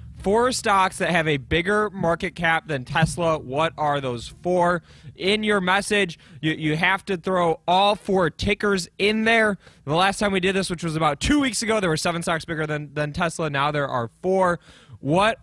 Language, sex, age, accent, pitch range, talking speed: English, male, 20-39, American, 145-185 Hz, 200 wpm